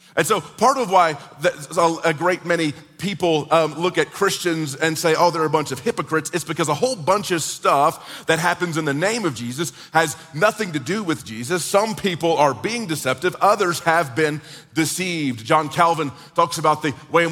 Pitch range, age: 150-180 Hz, 40-59